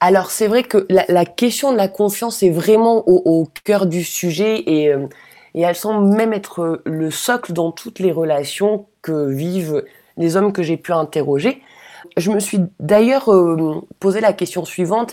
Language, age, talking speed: French, 20-39, 185 wpm